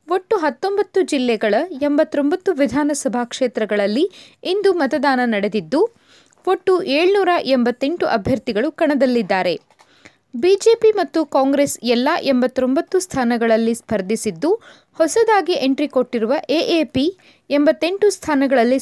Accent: native